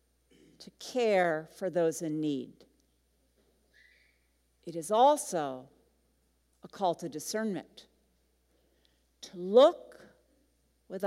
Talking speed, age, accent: 85 wpm, 50-69, American